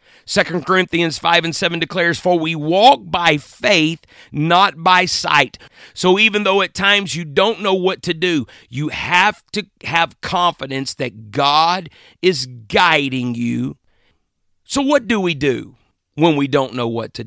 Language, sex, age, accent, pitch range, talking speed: English, male, 40-59, American, 130-175 Hz, 160 wpm